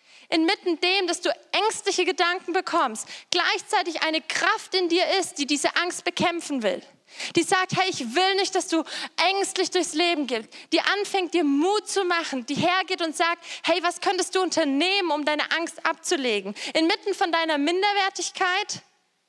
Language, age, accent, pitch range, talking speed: German, 20-39, German, 310-365 Hz, 165 wpm